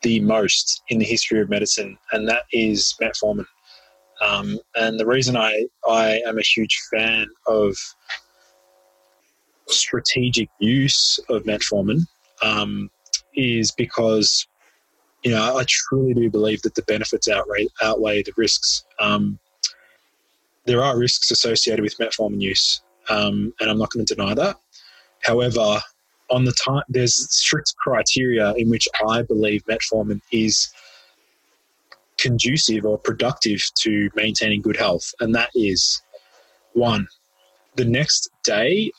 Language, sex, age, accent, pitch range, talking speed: English, male, 20-39, Australian, 105-125 Hz, 130 wpm